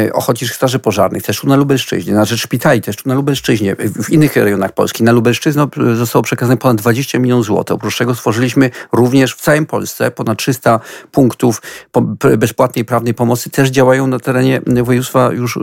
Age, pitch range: 40-59, 125-150 Hz